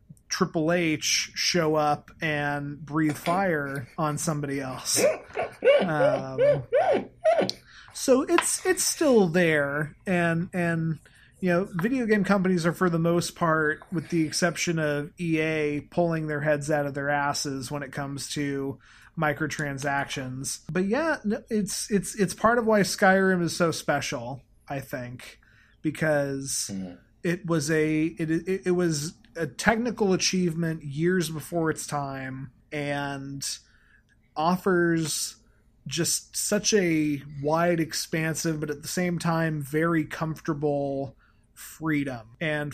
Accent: American